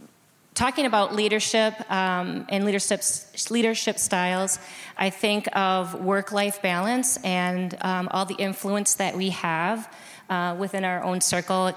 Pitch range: 180-200 Hz